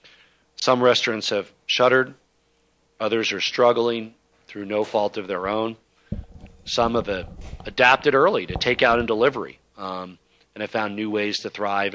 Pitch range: 95-115 Hz